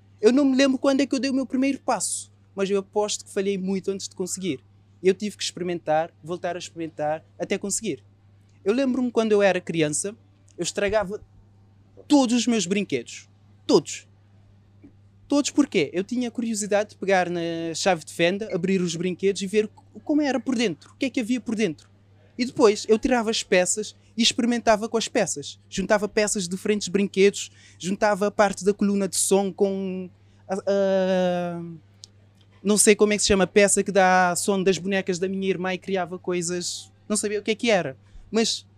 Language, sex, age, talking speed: Portuguese, male, 20-39, 190 wpm